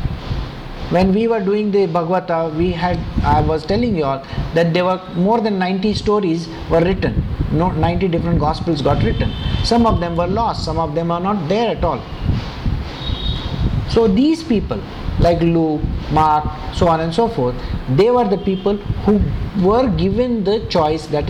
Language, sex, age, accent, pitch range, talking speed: English, male, 50-69, Indian, 140-195 Hz, 175 wpm